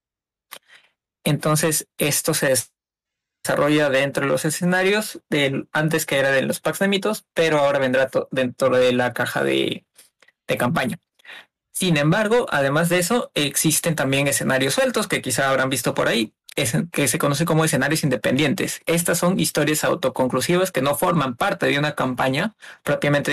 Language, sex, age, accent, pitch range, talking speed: Spanish, male, 20-39, Mexican, 140-175 Hz, 150 wpm